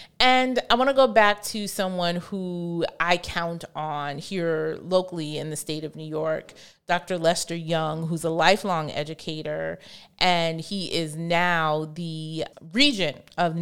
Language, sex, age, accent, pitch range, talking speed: English, female, 30-49, American, 160-190 Hz, 150 wpm